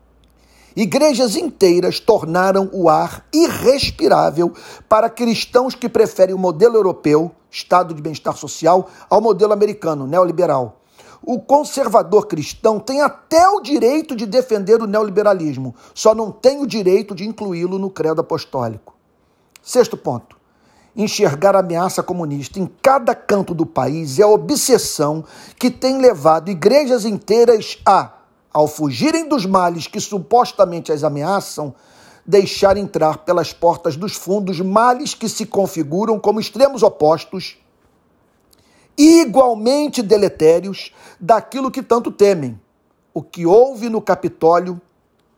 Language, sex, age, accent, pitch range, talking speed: Portuguese, male, 50-69, Brazilian, 165-230 Hz, 125 wpm